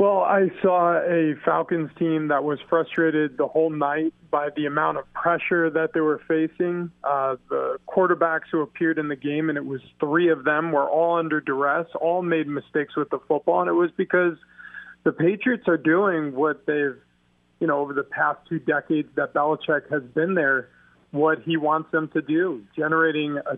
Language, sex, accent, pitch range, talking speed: English, male, American, 145-165 Hz, 190 wpm